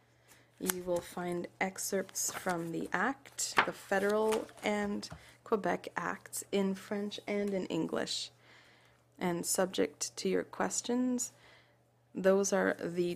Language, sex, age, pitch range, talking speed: English, female, 20-39, 175-205 Hz, 115 wpm